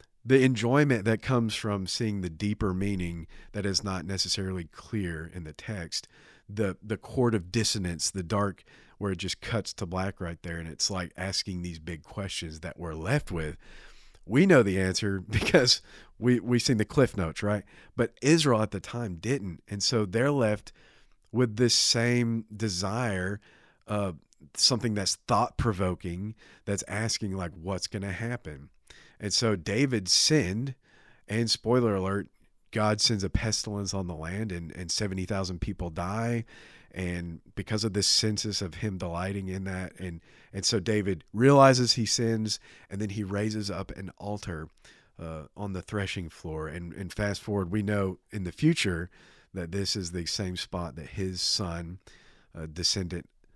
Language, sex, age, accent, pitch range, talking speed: English, male, 40-59, American, 90-110 Hz, 165 wpm